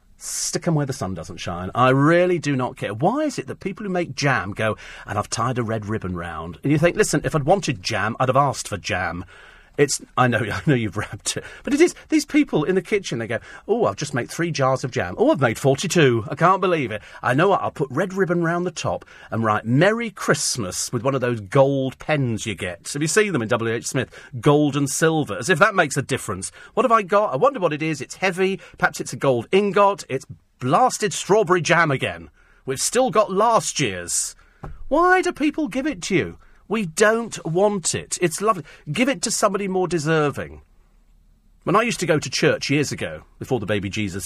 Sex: male